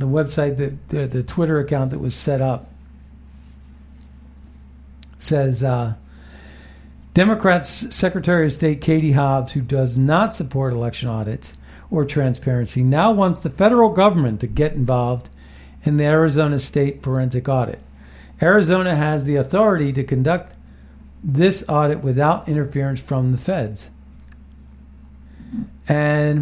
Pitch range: 110-155 Hz